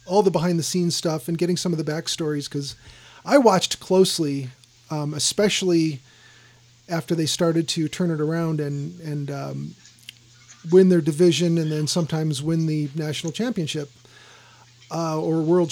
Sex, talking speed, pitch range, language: male, 155 wpm, 140-175 Hz, English